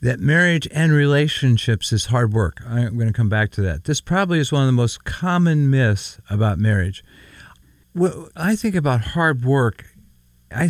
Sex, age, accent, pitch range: male, 50-69, American, 105-145 Hz